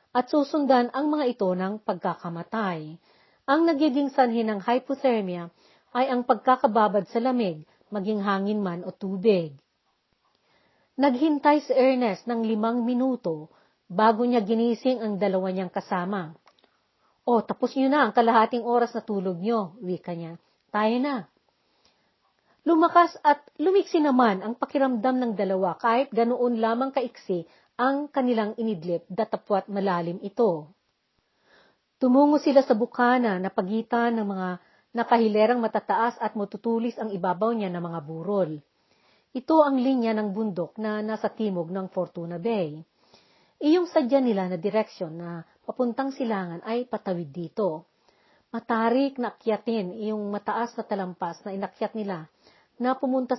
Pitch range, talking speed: 195-255 Hz, 135 wpm